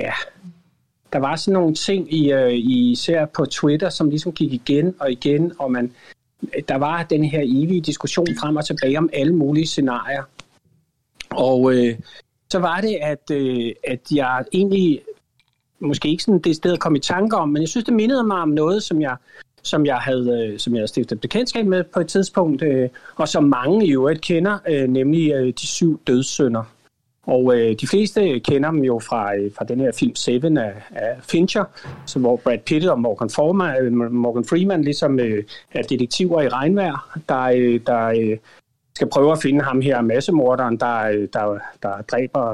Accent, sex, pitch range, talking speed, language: native, male, 125-165 Hz, 180 wpm, Danish